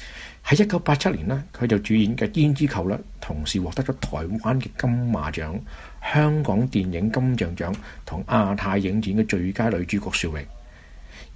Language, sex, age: Chinese, male, 50-69